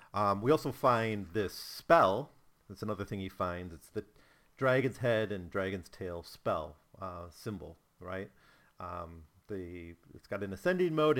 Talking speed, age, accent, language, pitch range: 155 wpm, 40-59, American, English, 95-140 Hz